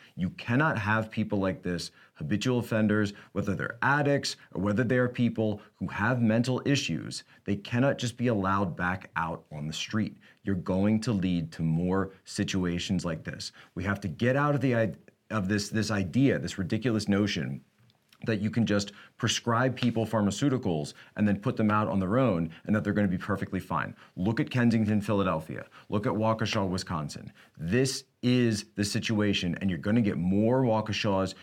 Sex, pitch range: male, 100-130 Hz